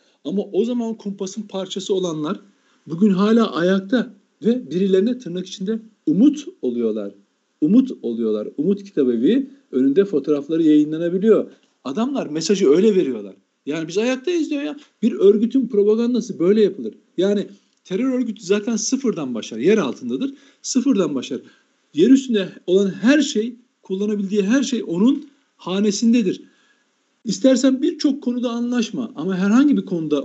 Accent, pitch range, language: native, 195-250 Hz, Turkish